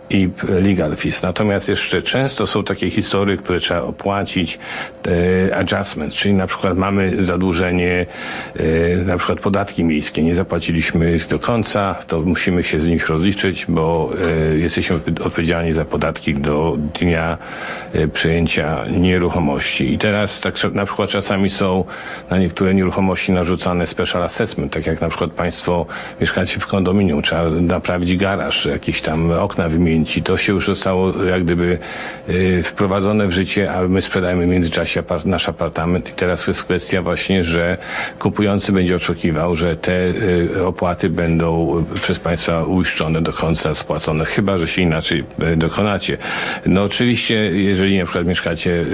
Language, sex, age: Polish, male, 50-69